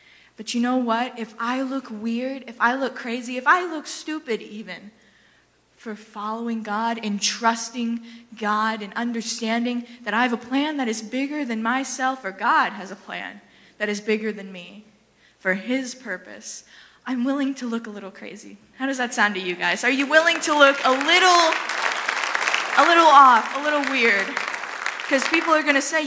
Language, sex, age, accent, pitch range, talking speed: English, female, 20-39, American, 220-270 Hz, 185 wpm